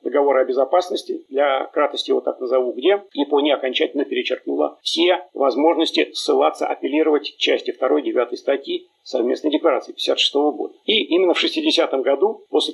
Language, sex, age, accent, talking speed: Russian, male, 40-59, native, 140 wpm